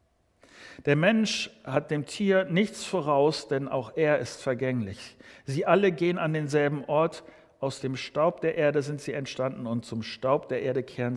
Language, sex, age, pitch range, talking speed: German, male, 50-69, 135-180 Hz, 170 wpm